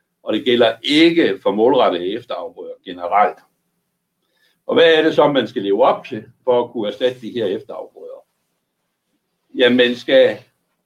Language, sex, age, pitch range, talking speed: Danish, male, 60-79, 115-175 Hz, 155 wpm